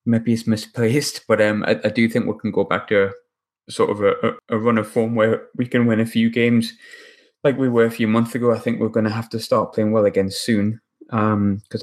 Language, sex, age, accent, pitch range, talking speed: English, male, 20-39, British, 100-125 Hz, 255 wpm